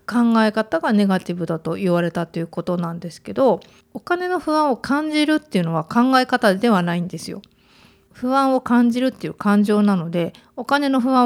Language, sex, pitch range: Japanese, female, 190-250 Hz